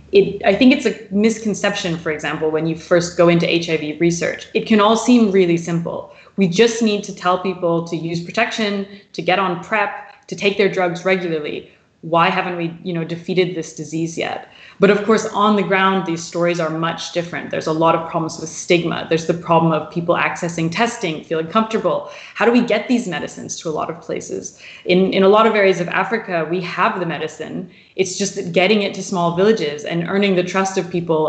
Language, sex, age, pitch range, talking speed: English, female, 20-39, 170-205 Hz, 215 wpm